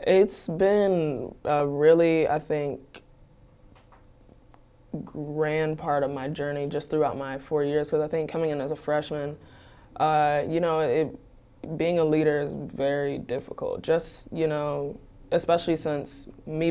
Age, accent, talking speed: 20-39, American, 145 wpm